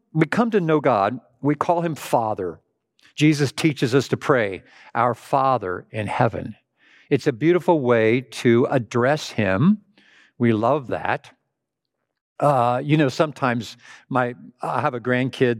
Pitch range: 120-150 Hz